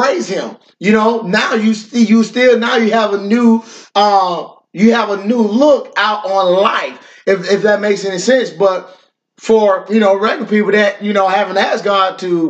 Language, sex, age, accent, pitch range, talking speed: English, male, 20-39, American, 190-230 Hz, 190 wpm